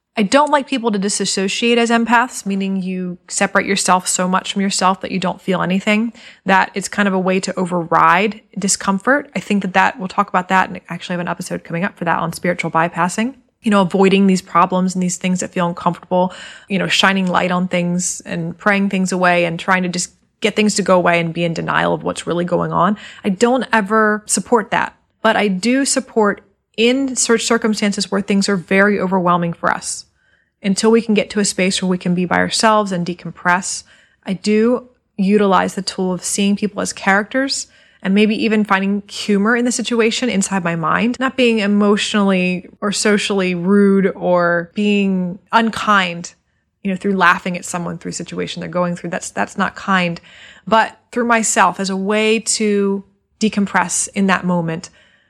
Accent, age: American, 20-39